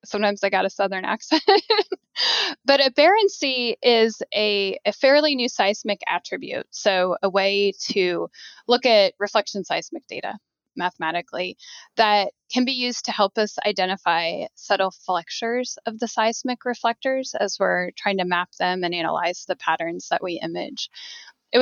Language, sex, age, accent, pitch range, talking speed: English, female, 10-29, American, 195-265 Hz, 145 wpm